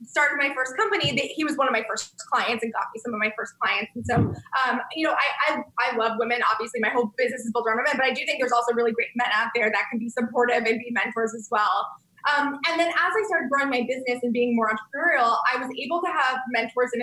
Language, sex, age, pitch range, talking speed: English, female, 20-39, 240-295 Hz, 275 wpm